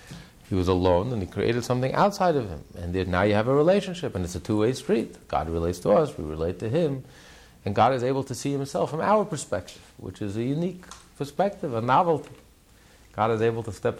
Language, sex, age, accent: English, male, 50-69, American